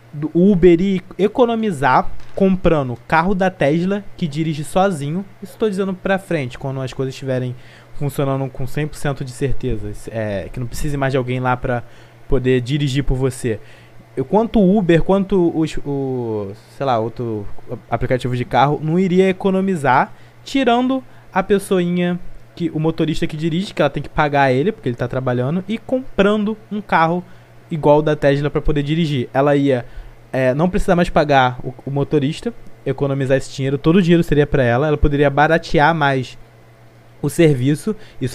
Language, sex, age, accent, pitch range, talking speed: Portuguese, male, 20-39, Brazilian, 130-185 Hz, 165 wpm